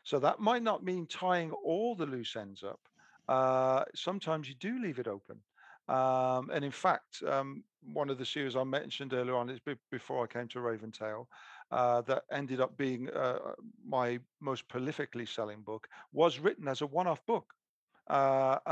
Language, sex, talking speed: English, male, 180 wpm